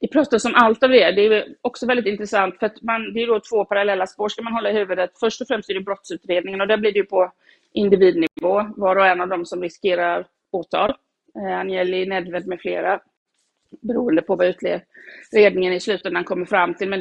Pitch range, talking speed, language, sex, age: 185-215 Hz, 215 wpm, Swedish, female, 30-49